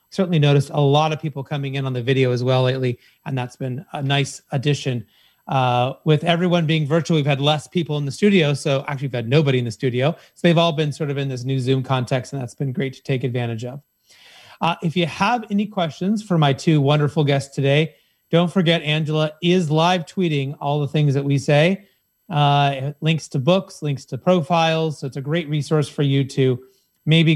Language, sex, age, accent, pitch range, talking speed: English, male, 30-49, American, 135-160 Hz, 215 wpm